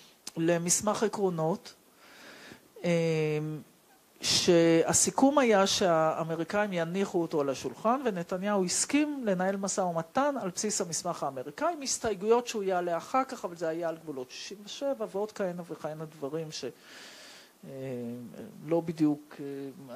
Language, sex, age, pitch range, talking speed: Hebrew, male, 50-69, 155-215 Hz, 115 wpm